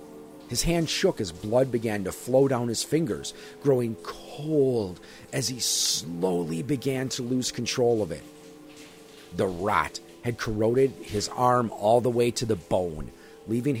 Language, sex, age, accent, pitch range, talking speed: English, male, 40-59, American, 95-140 Hz, 150 wpm